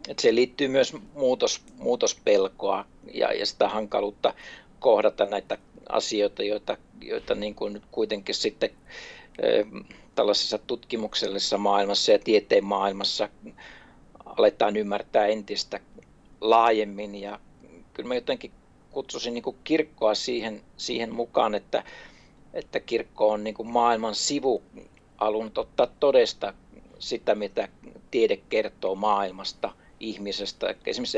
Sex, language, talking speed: male, Finnish, 115 wpm